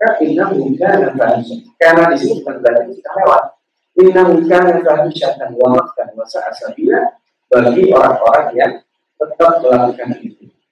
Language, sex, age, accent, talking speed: Indonesian, male, 40-59, native, 145 wpm